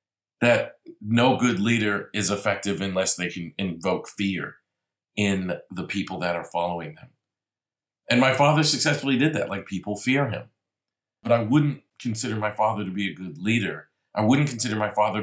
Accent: American